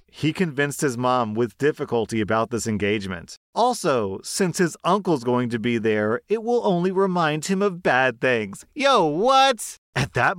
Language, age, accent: English, 30-49, American